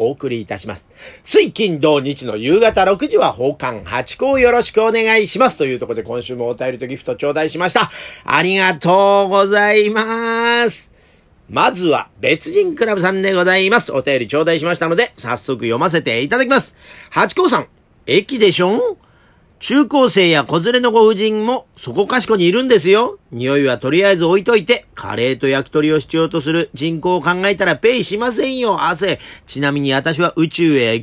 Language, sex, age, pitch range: Japanese, male, 40-59, 150-235 Hz